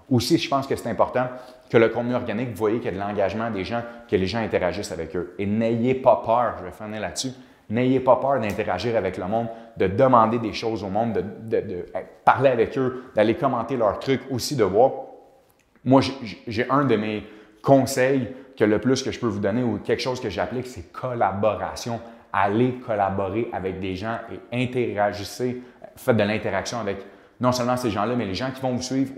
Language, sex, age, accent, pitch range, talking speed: French, male, 30-49, Canadian, 105-135 Hz, 210 wpm